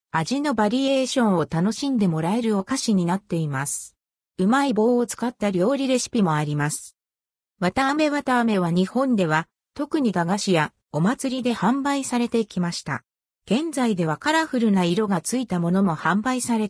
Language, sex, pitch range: Japanese, female, 170-255 Hz